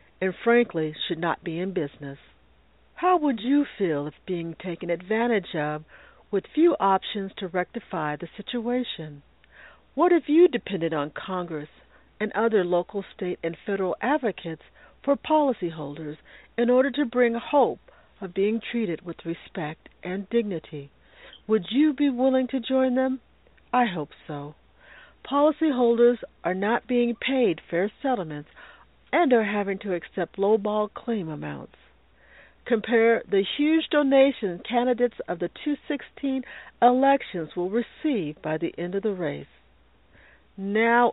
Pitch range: 170-250 Hz